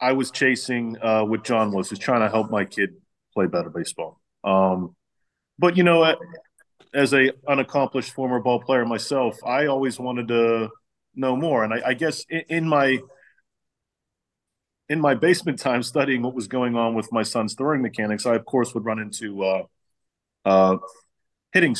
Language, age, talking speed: English, 30-49, 175 wpm